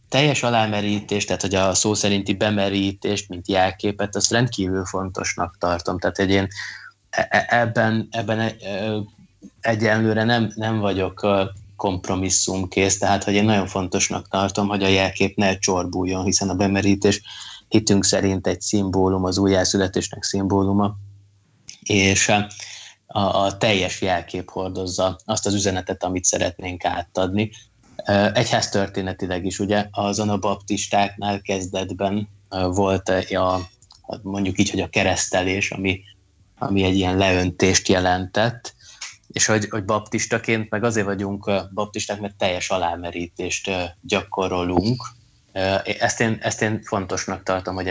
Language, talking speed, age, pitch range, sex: Hungarian, 120 wpm, 20-39, 95-105 Hz, male